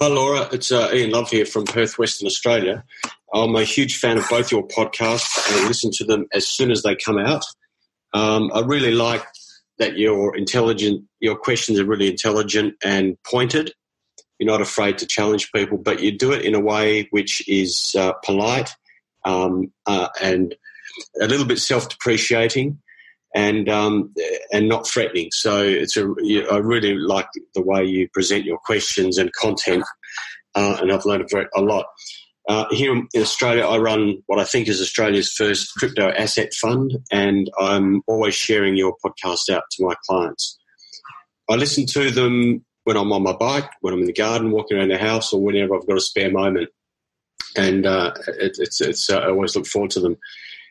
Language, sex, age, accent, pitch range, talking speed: English, male, 40-59, Australian, 100-125 Hz, 180 wpm